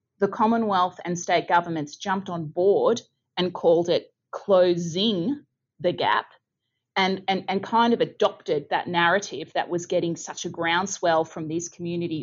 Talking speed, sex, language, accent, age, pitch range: 150 wpm, female, English, Australian, 30-49, 165-205 Hz